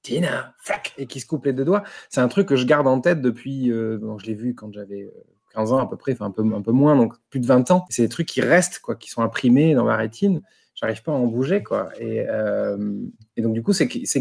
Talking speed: 270 wpm